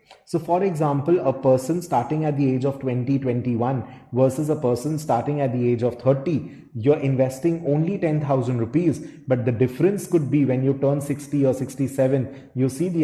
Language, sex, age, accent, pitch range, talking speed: English, male, 30-49, Indian, 125-150 Hz, 180 wpm